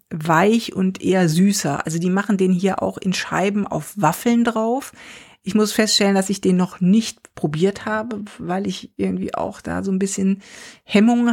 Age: 50-69